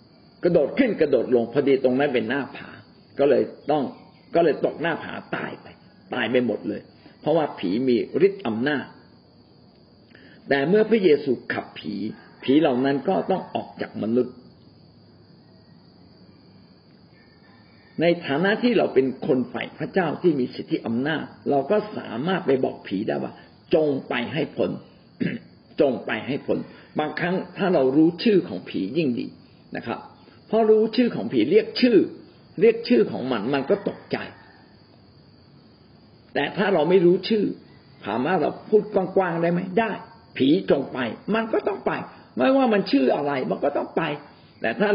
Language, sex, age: Thai, male, 50-69